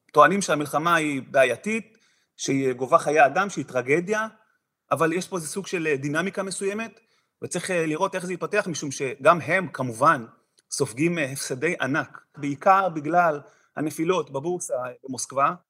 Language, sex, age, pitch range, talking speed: Hebrew, male, 30-49, 145-195 Hz, 135 wpm